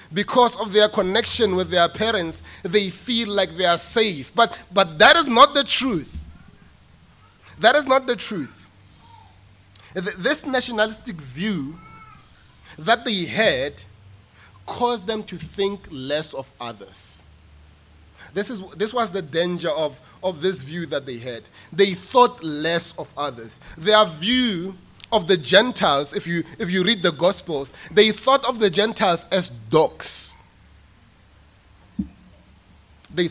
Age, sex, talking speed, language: 30-49, male, 135 wpm, English